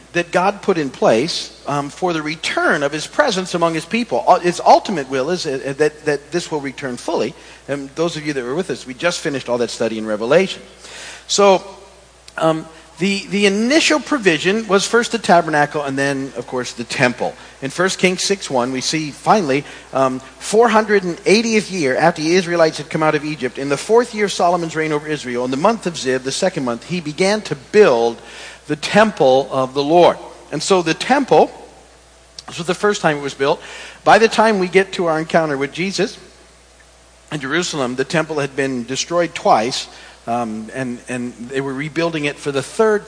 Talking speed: 200 wpm